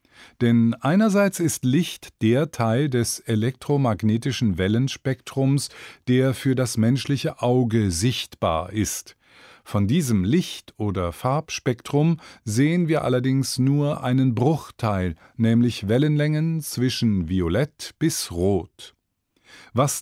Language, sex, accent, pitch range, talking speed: German, male, German, 105-140 Hz, 100 wpm